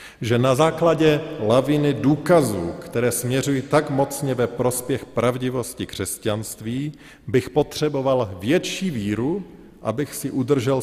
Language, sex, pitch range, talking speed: Slovak, male, 100-130 Hz, 110 wpm